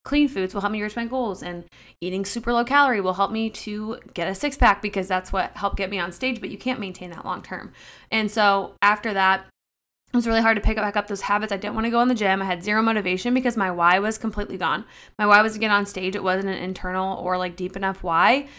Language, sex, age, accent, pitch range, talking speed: English, female, 20-39, American, 185-215 Hz, 275 wpm